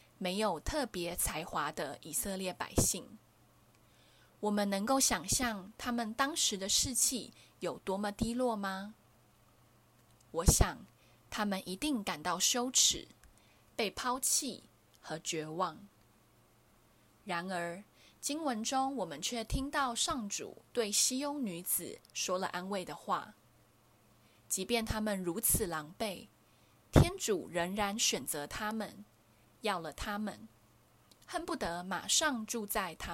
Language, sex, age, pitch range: Chinese, female, 20-39, 170-235 Hz